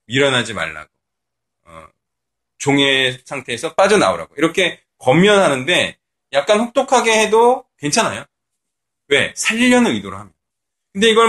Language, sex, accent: Korean, male, native